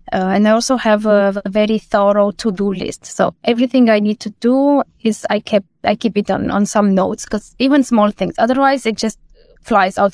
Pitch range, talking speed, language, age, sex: 200-240 Hz, 200 wpm, English, 20-39, female